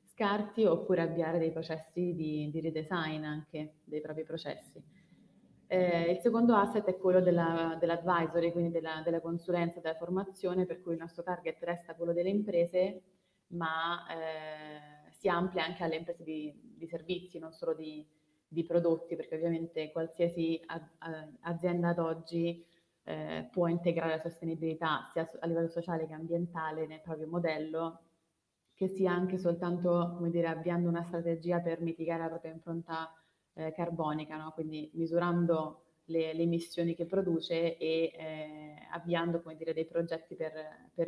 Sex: female